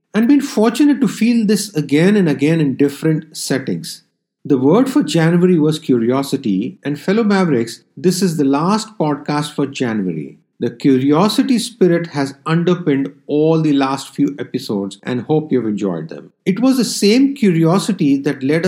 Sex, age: male, 50-69